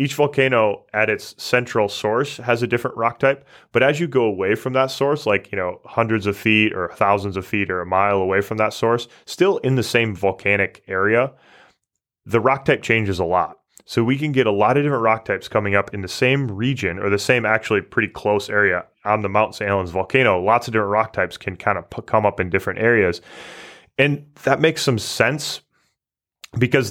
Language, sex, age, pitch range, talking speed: English, male, 20-39, 100-125 Hz, 215 wpm